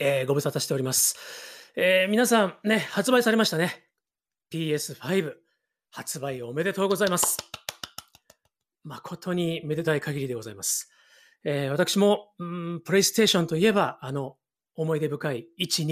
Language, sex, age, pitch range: Japanese, male, 40-59, 140-185 Hz